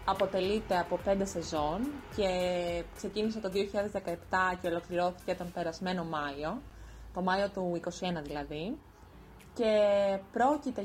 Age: 20-39